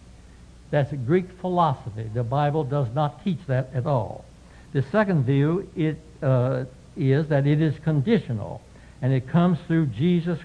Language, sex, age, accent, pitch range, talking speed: English, male, 60-79, American, 125-165 Hz, 155 wpm